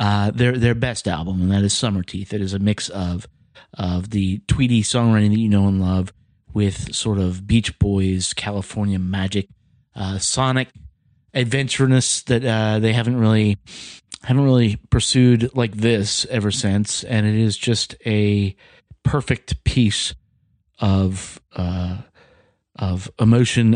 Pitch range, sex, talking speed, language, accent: 95-120 Hz, male, 145 wpm, English, American